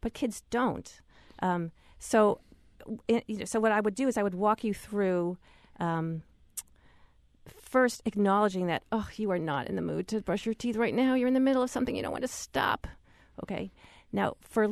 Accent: American